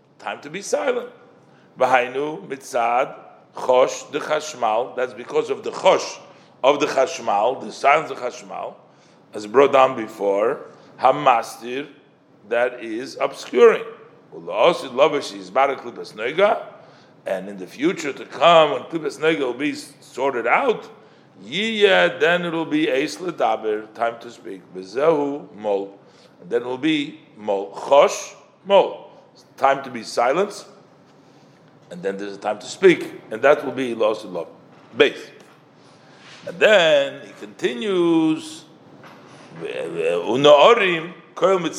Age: 50-69